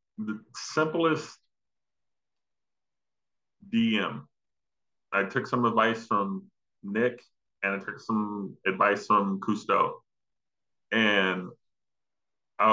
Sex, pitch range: male, 105-125 Hz